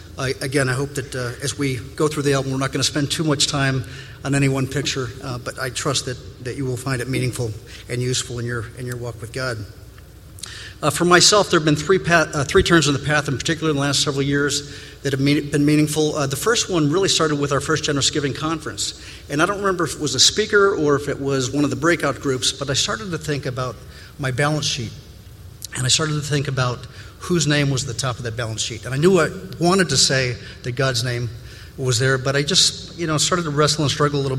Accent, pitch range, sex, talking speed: American, 125-150 Hz, male, 260 wpm